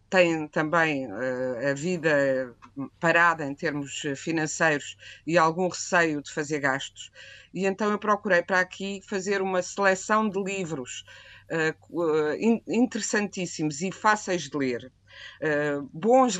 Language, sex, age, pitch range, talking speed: Portuguese, female, 50-69, 160-205 Hz, 130 wpm